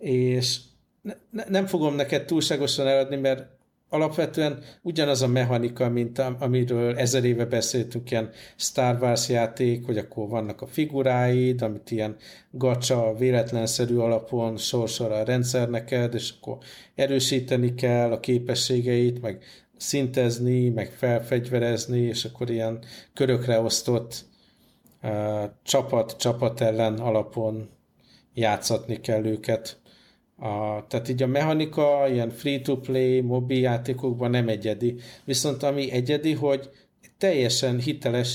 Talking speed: 115 wpm